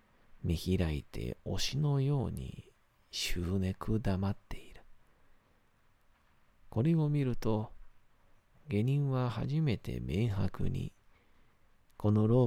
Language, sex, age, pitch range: Japanese, male, 40-59, 90-110 Hz